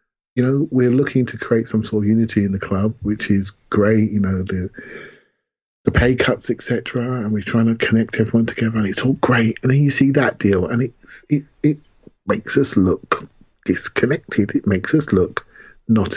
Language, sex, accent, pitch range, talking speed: English, male, British, 100-120 Hz, 195 wpm